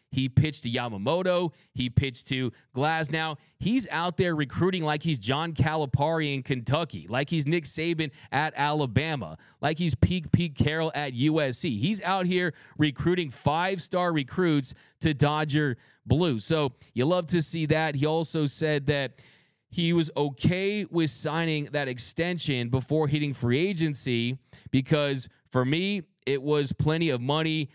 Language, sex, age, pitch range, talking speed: English, male, 30-49, 130-160 Hz, 150 wpm